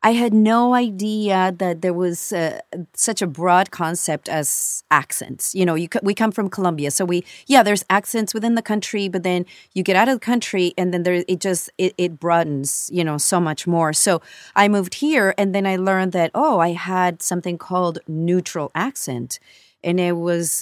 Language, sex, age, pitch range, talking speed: English, female, 30-49, 160-195 Hz, 205 wpm